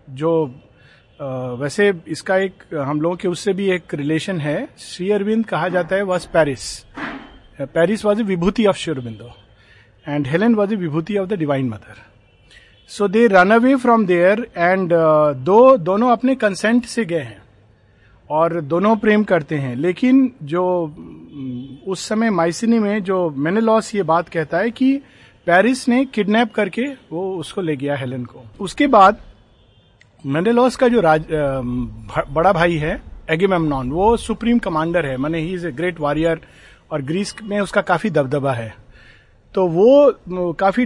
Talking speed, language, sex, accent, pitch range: 150 wpm, Hindi, male, native, 145-210 Hz